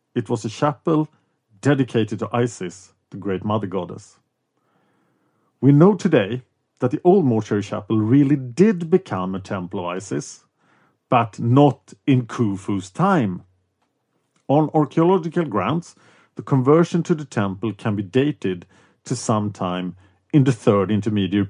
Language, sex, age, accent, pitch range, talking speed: English, male, 40-59, Norwegian, 105-145 Hz, 135 wpm